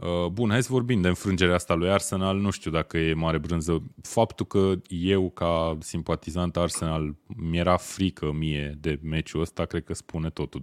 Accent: native